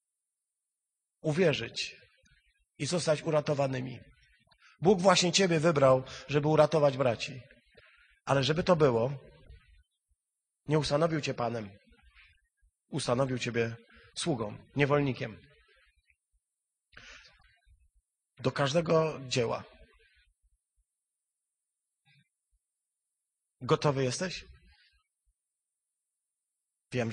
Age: 30-49